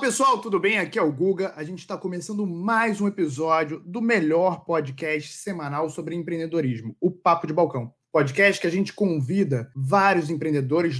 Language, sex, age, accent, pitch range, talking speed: Portuguese, male, 20-39, Brazilian, 145-190 Hz, 175 wpm